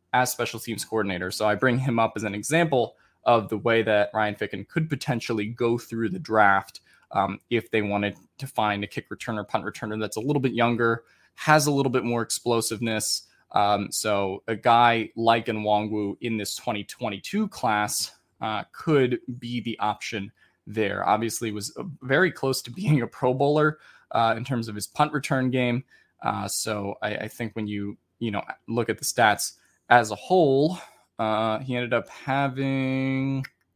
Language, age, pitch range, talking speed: English, 20-39, 105-125 Hz, 180 wpm